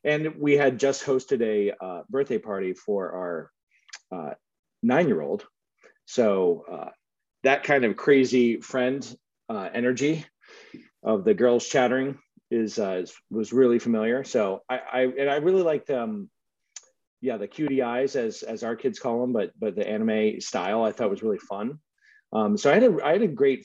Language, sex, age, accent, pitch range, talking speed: English, male, 40-59, American, 115-185 Hz, 175 wpm